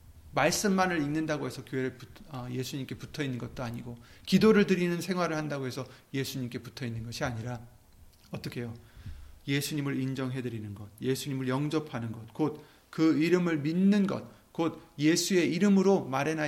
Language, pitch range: Korean, 120-170 Hz